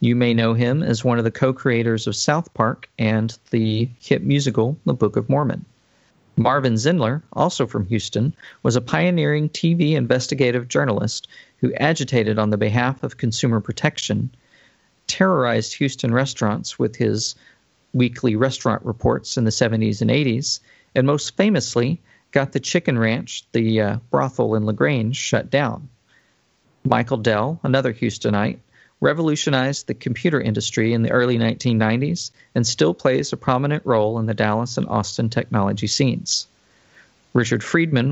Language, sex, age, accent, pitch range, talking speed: English, male, 40-59, American, 115-140 Hz, 145 wpm